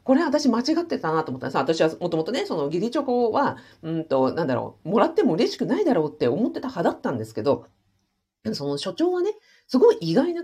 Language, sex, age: Japanese, female, 40-59